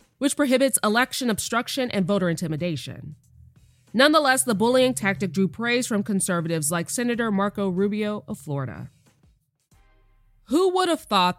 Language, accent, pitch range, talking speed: English, American, 165-255 Hz, 130 wpm